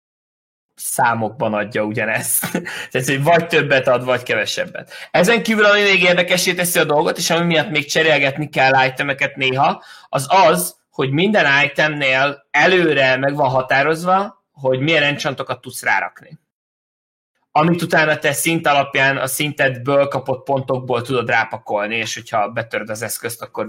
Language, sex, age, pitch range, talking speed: Hungarian, male, 20-39, 135-175 Hz, 145 wpm